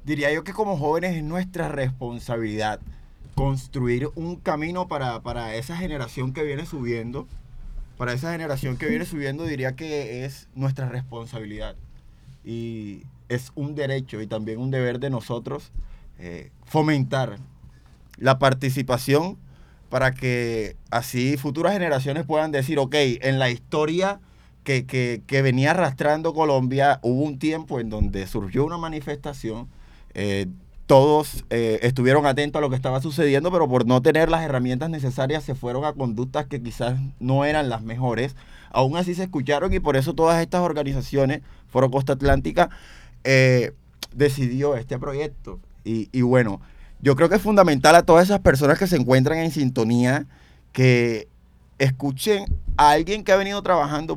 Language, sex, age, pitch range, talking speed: Spanish, male, 20-39, 115-150 Hz, 150 wpm